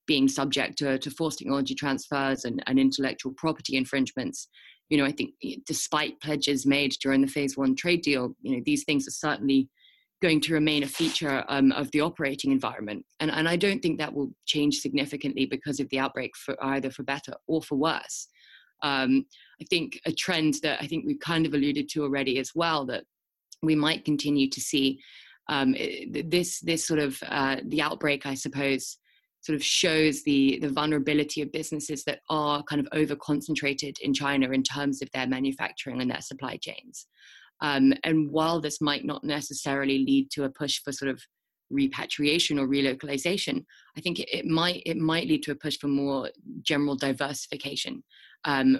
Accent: British